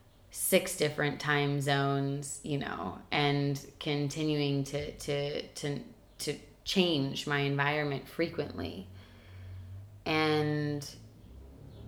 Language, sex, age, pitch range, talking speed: English, female, 20-39, 105-155 Hz, 85 wpm